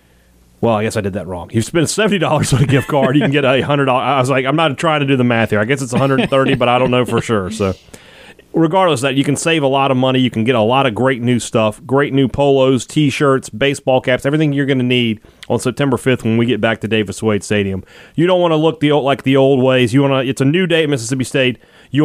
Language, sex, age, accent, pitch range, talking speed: English, male, 30-49, American, 115-140 Hz, 280 wpm